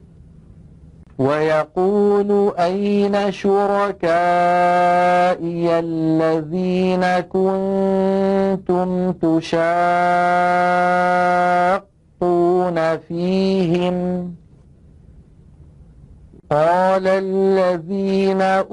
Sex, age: male, 50-69